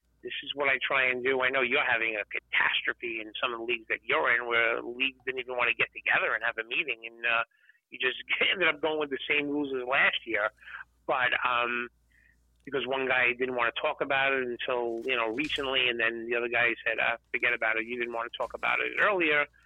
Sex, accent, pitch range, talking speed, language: male, American, 125-160 Hz, 245 wpm, English